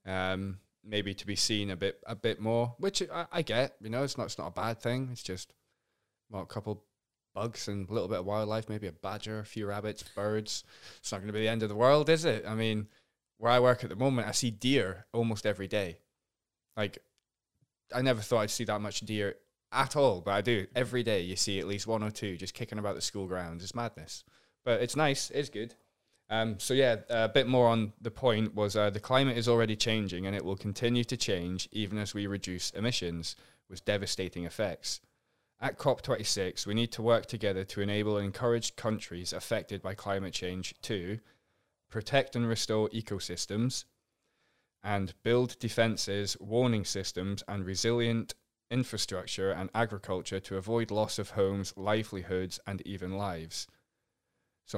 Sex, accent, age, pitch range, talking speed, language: male, British, 10-29, 95-115 Hz, 190 wpm, English